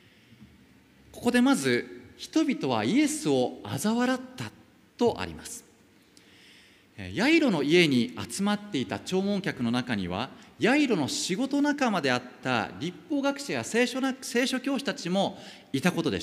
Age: 40-59